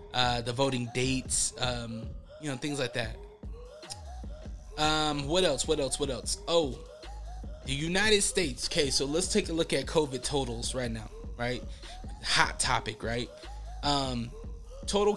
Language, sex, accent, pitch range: English, male, American, 120-150 Hz